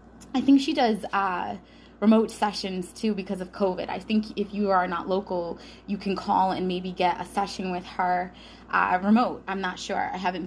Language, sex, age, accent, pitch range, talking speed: English, female, 20-39, American, 185-220 Hz, 200 wpm